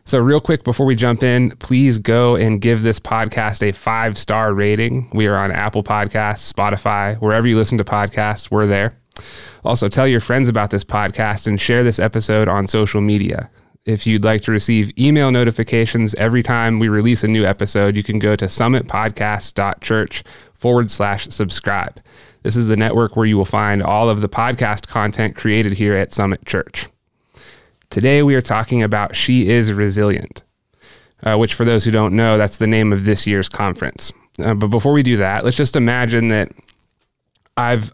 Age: 30-49